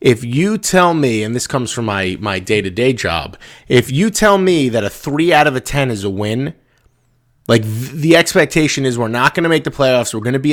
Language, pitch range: English, 120-165 Hz